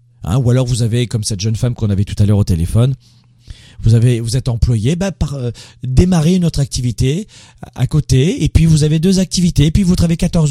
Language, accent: French, French